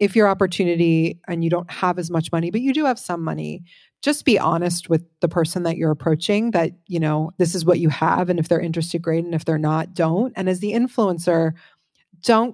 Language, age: English, 30-49